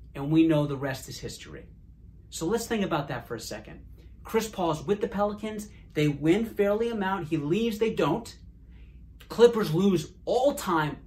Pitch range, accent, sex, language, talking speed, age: 140-205 Hz, American, male, English, 175 wpm, 30-49